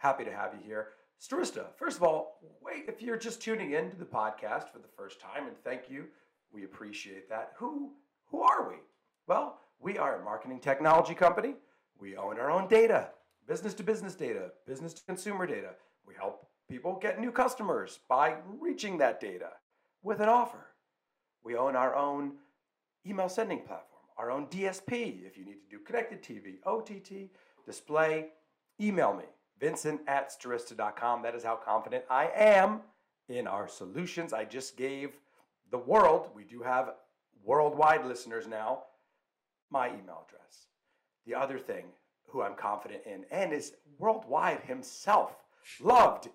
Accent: American